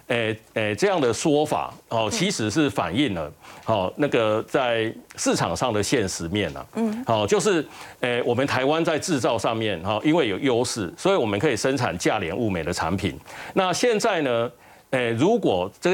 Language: Chinese